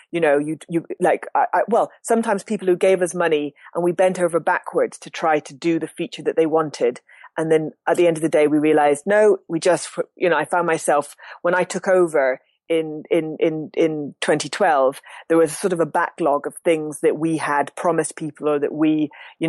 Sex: female